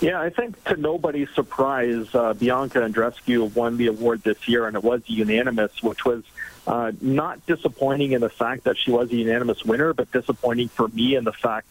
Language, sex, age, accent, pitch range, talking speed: English, male, 40-59, American, 110-130 Hz, 200 wpm